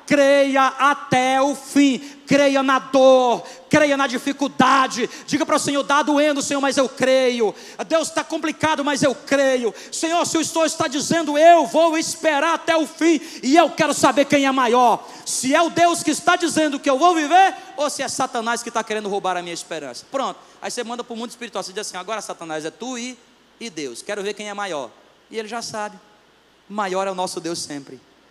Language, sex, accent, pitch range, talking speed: Portuguese, male, Brazilian, 205-295 Hz, 210 wpm